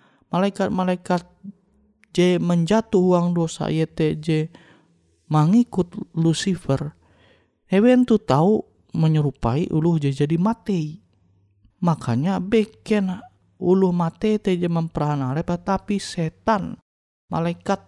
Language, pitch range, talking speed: Indonesian, 130-190 Hz, 85 wpm